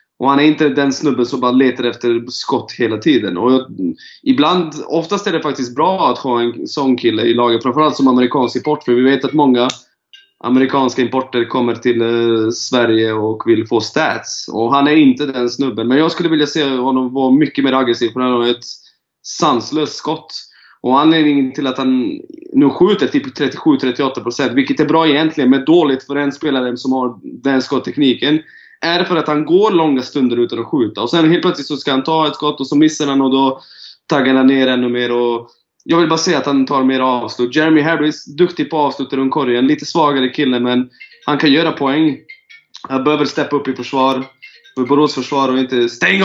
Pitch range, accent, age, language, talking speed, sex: 125-155 Hz, native, 20-39, Swedish, 205 wpm, male